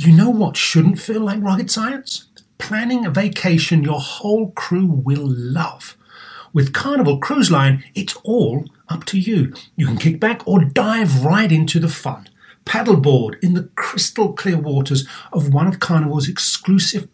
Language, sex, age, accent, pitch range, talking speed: English, male, 40-59, British, 140-205 Hz, 160 wpm